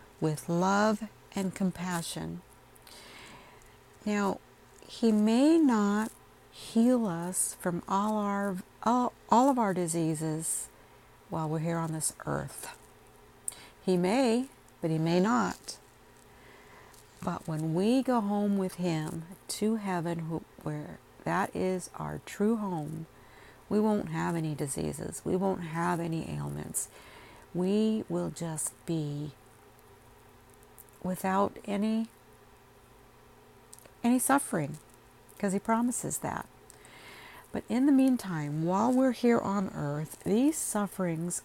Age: 50-69